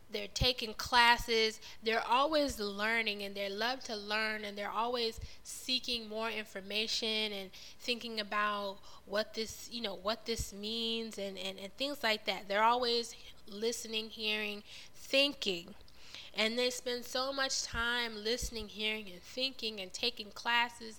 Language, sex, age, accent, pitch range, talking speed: English, female, 10-29, American, 200-235 Hz, 145 wpm